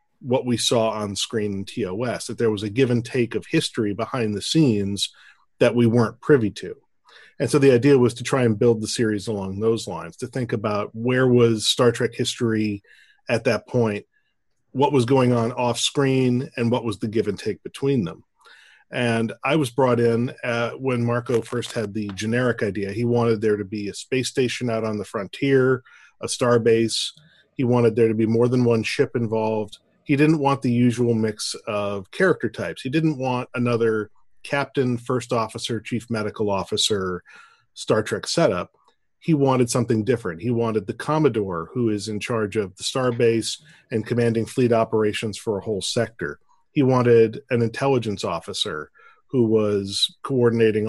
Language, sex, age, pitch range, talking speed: English, male, 40-59, 110-125 Hz, 180 wpm